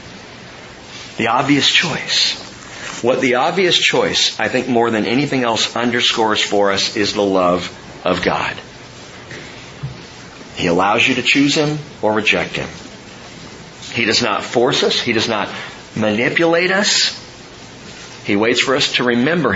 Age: 50-69